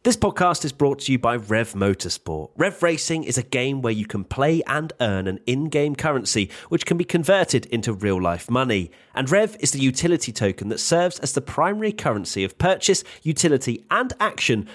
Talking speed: 200 wpm